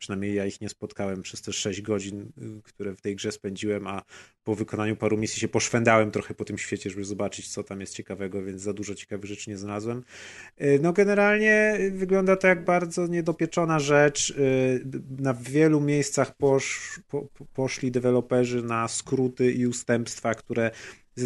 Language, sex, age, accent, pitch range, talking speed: Polish, male, 30-49, native, 105-130 Hz, 170 wpm